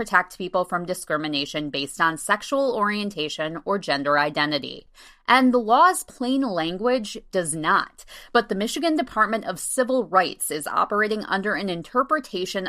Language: English